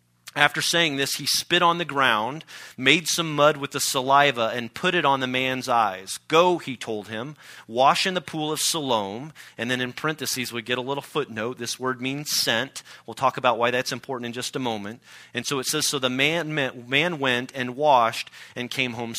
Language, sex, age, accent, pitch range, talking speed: English, male, 40-59, American, 125-150 Hz, 215 wpm